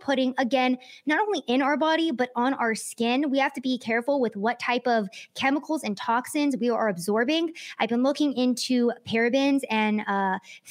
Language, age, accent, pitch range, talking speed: English, 20-39, American, 215-275 Hz, 185 wpm